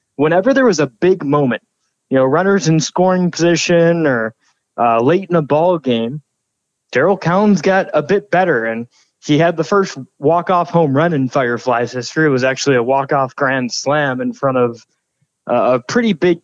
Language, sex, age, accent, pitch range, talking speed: English, male, 20-39, American, 130-165 Hz, 180 wpm